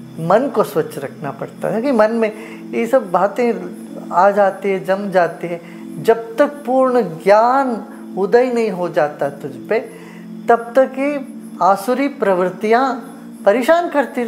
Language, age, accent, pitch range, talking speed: English, 20-39, Indian, 165-230 Hz, 145 wpm